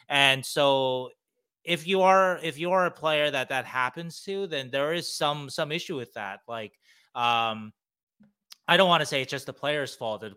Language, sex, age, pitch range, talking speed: English, male, 30-49, 115-145 Hz, 210 wpm